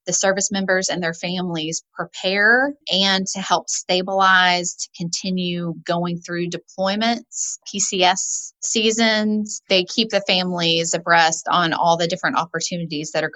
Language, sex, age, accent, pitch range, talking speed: English, female, 30-49, American, 170-195 Hz, 135 wpm